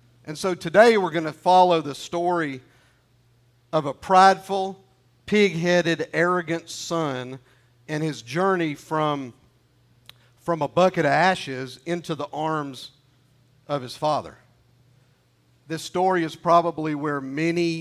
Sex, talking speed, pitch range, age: male, 120 wpm, 125-165 Hz, 50-69